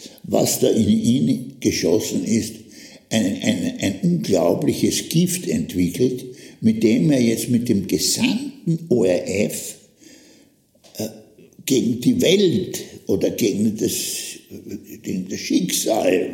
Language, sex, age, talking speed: German, male, 60-79, 110 wpm